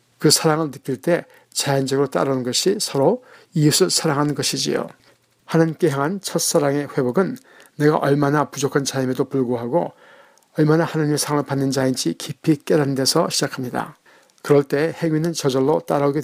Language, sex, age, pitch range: Korean, male, 60-79, 135-160 Hz